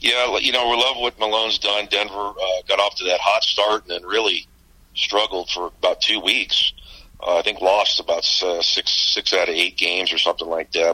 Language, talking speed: English, 220 wpm